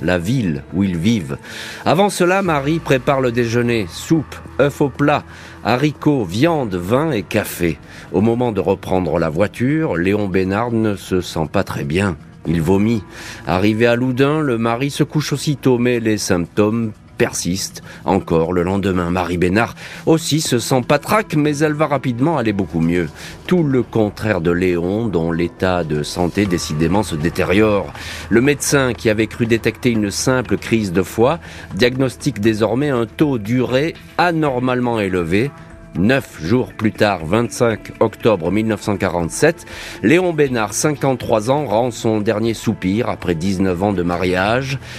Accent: French